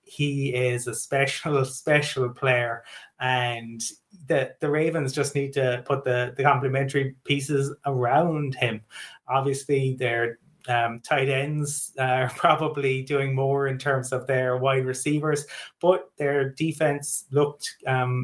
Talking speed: 130 wpm